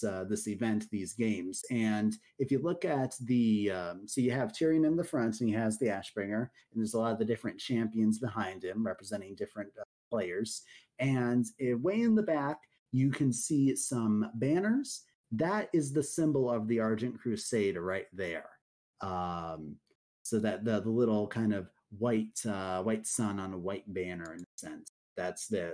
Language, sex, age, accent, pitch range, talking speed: English, male, 30-49, American, 105-135 Hz, 185 wpm